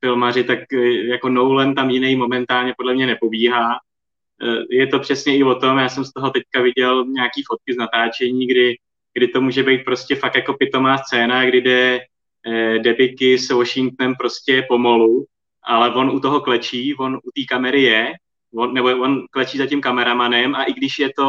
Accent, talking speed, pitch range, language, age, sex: native, 185 wpm, 125-140 Hz, Czech, 20-39, male